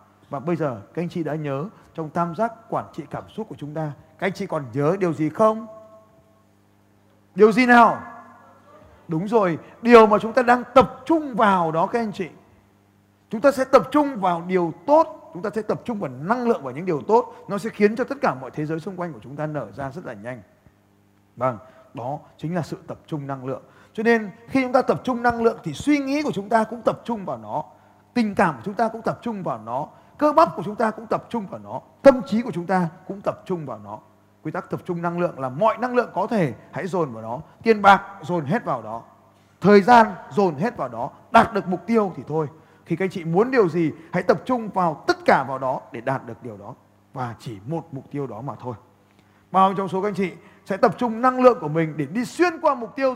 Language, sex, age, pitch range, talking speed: Vietnamese, male, 20-39, 150-240 Hz, 250 wpm